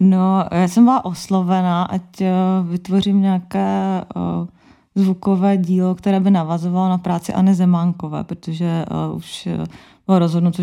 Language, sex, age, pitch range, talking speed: Czech, female, 20-39, 155-175 Hz, 120 wpm